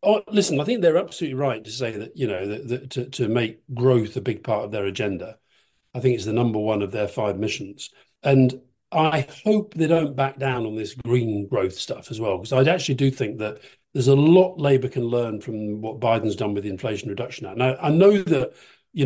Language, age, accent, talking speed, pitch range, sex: English, 40-59, British, 235 wpm, 120-160 Hz, male